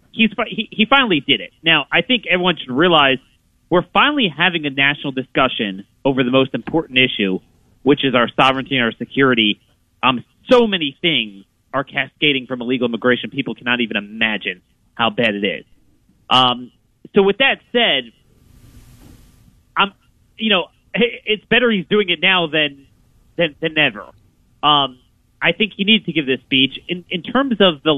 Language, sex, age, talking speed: English, male, 30-49, 170 wpm